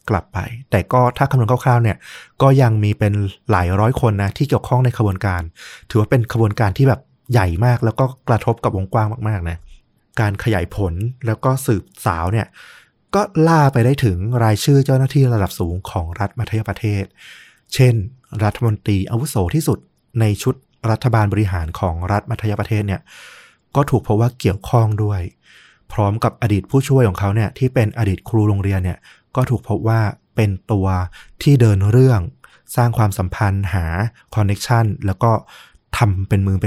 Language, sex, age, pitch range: Thai, male, 20-39, 100-120 Hz